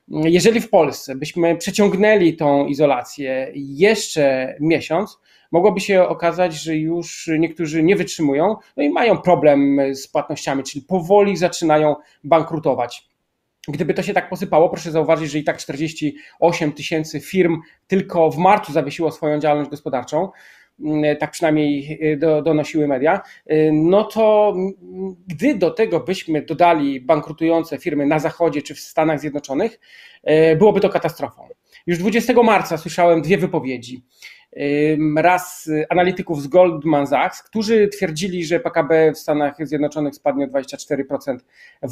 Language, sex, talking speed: Polish, male, 130 wpm